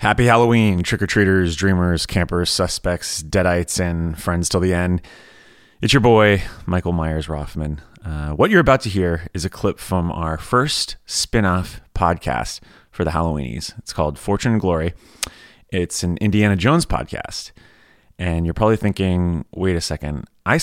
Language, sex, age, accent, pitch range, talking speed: English, male, 30-49, American, 80-105 Hz, 155 wpm